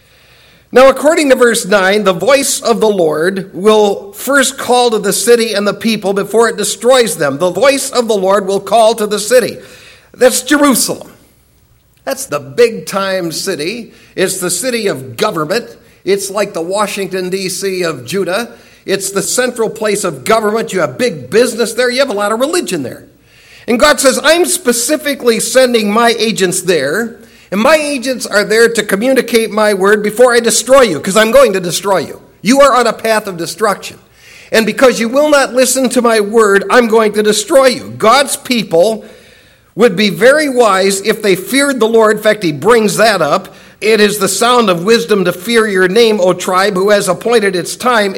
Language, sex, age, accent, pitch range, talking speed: English, male, 50-69, American, 195-245 Hz, 190 wpm